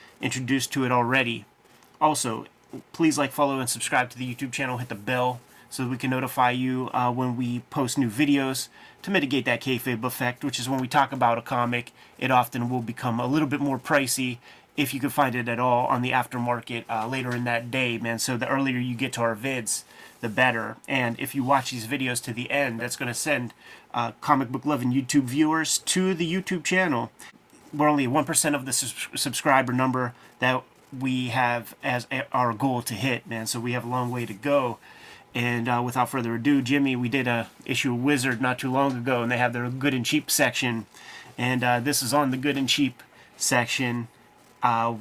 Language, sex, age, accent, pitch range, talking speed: English, male, 30-49, American, 120-140 Hz, 215 wpm